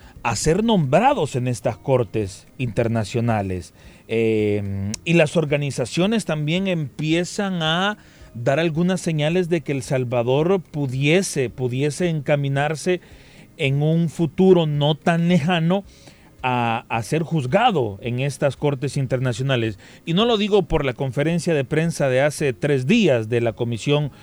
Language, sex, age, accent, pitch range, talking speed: Spanish, male, 40-59, Mexican, 120-170 Hz, 135 wpm